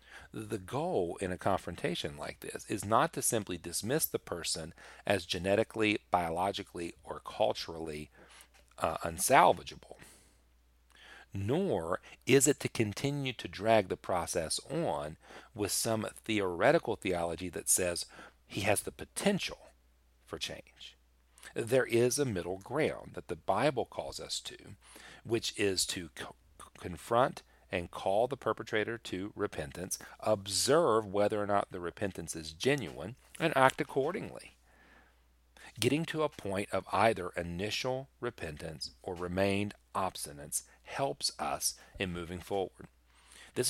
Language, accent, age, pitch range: English, American, 40-59, 80-115 Hz